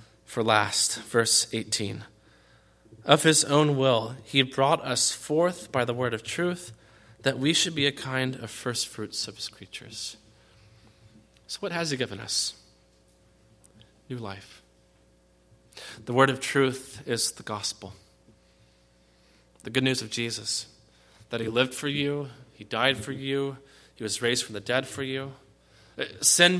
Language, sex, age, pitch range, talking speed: English, male, 30-49, 110-150 Hz, 150 wpm